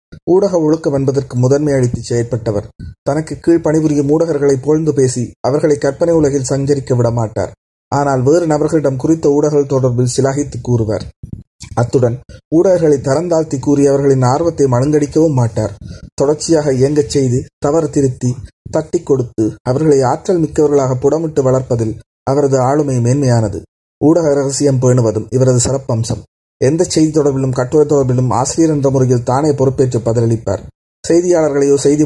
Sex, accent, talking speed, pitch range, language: male, native, 115 wpm, 120-145 Hz, Tamil